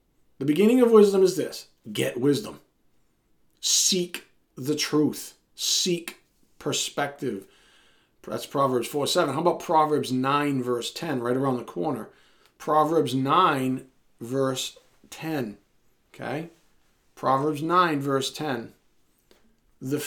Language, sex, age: English, male, 40-59